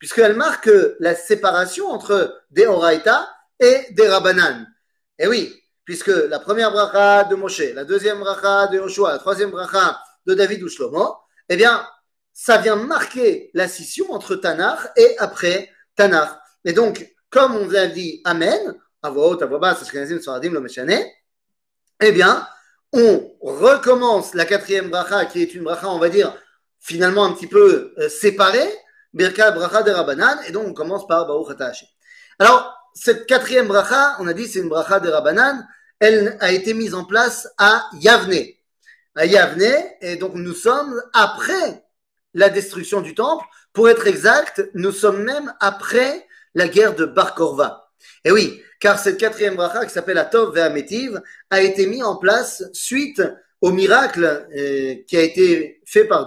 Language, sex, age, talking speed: French, male, 40-59, 150 wpm